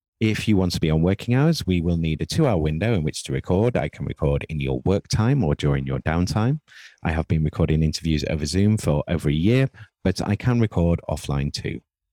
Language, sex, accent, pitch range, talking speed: English, male, British, 80-115 Hz, 230 wpm